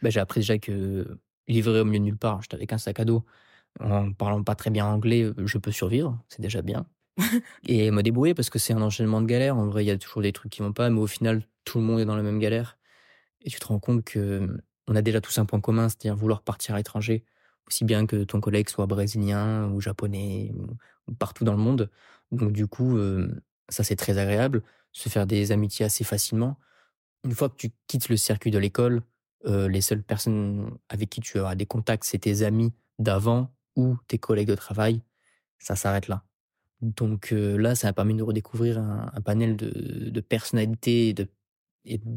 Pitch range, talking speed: 105-115 Hz, 220 wpm